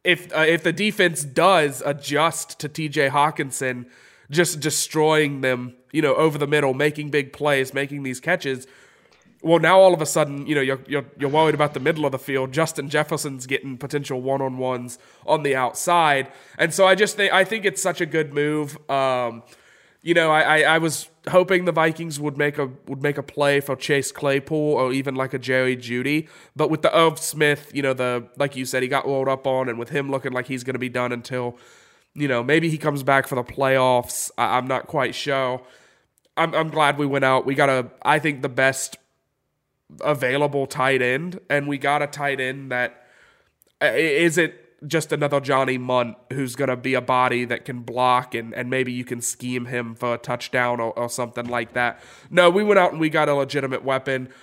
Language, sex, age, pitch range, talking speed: English, male, 20-39, 130-155 Hz, 215 wpm